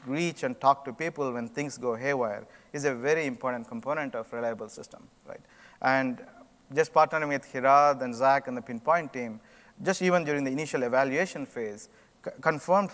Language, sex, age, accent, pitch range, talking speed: English, male, 30-49, Indian, 120-155 Hz, 165 wpm